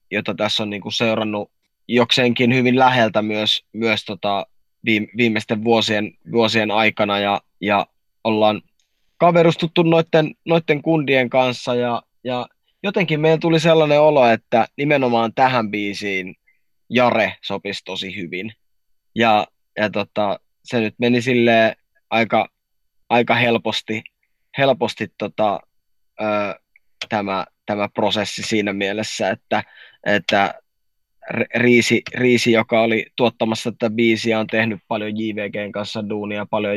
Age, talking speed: 20-39, 115 wpm